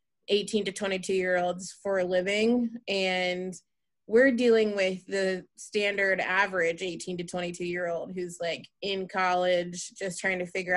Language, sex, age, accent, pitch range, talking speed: English, female, 20-39, American, 185-210 Hz, 155 wpm